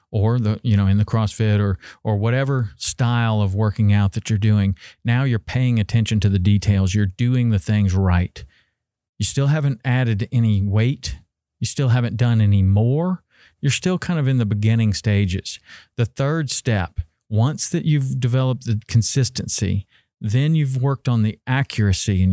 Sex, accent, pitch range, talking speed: male, American, 100-125 Hz, 175 wpm